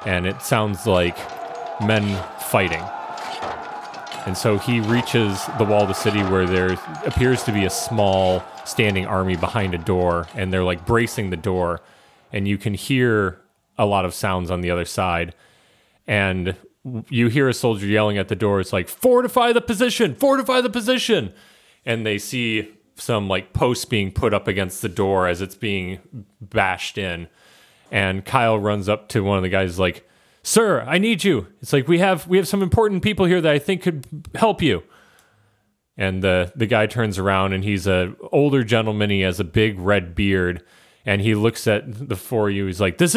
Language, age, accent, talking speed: English, 30-49, American, 190 wpm